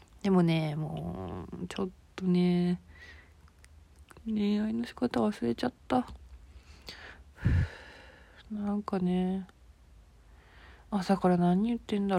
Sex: female